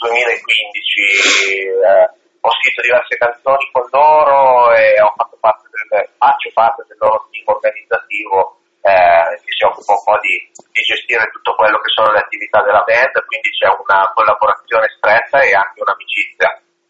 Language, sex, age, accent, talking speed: Italian, male, 30-49, native, 140 wpm